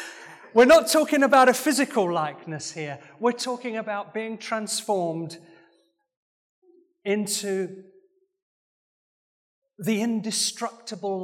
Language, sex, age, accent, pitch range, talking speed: English, male, 40-59, British, 170-250 Hz, 85 wpm